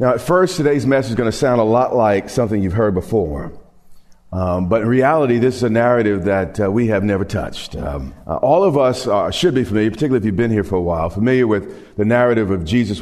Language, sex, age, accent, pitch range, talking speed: English, male, 40-59, American, 100-130 Hz, 240 wpm